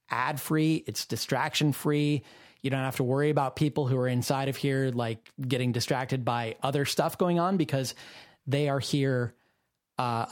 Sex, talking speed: male, 175 wpm